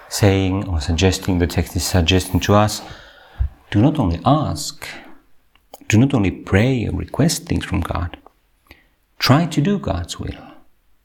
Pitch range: 90-115 Hz